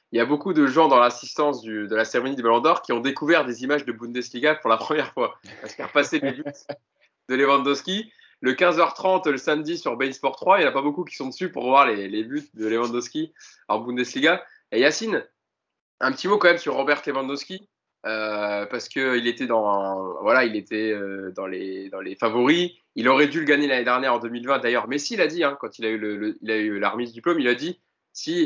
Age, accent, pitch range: 20-39, French, 110-155 Hz